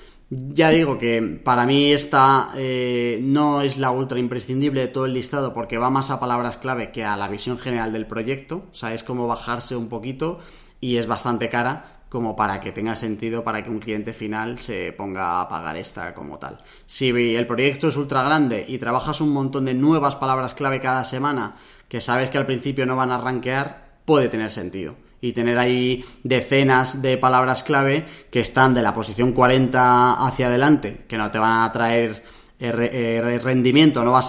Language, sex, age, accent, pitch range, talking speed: Spanish, male, 20-39, Spanish, 115-135 Hz, 190 wpm